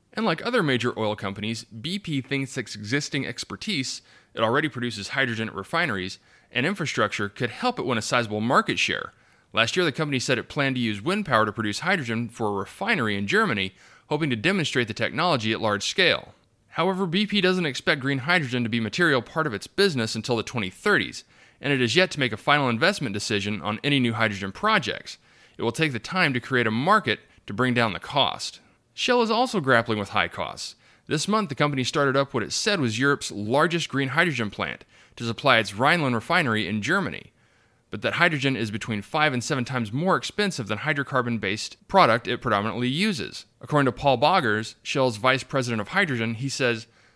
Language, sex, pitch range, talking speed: English, male, 110-150 Hz, 200 wpm